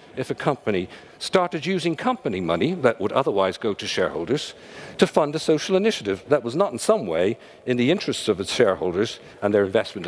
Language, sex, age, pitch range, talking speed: English, male, 50-69, 130-210 Hz, 195 wpm